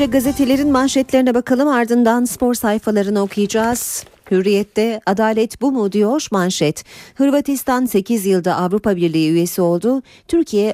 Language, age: Turkish, 40-59